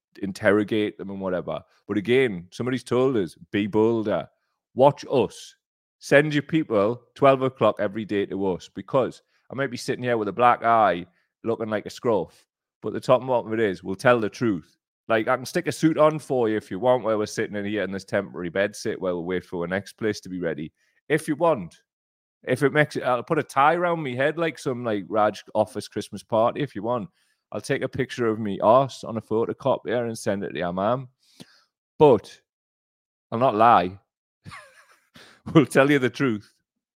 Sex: male